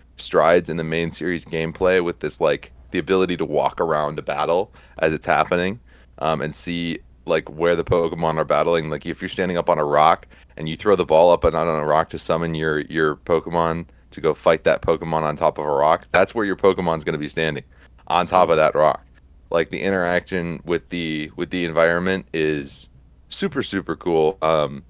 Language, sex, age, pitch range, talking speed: English, male, 30-49, 75-85 Hz, 210 wpm